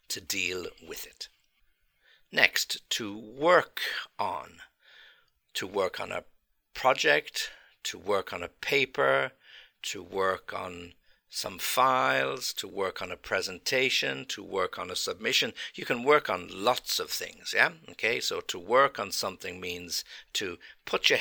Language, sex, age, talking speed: English, male, 60-79, 145 wpm